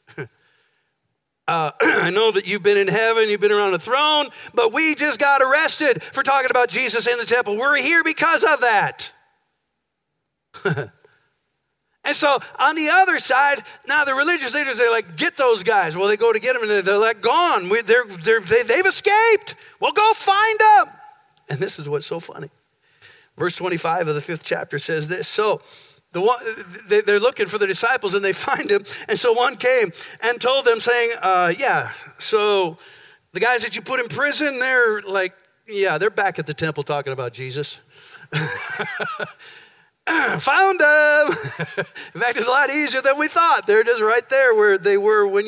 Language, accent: English, American